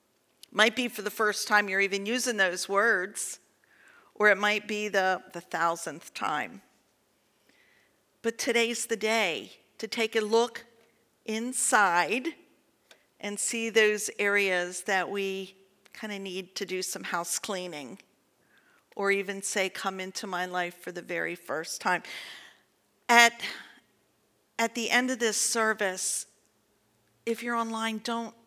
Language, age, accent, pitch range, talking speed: English, 50-69, American, 200-245 Hz, 135 wpm